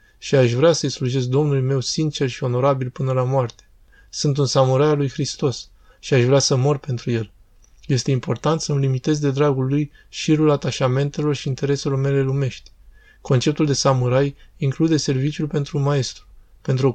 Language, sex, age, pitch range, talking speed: Romanian, male, 20-39, 120-145 Hz, 170 wpm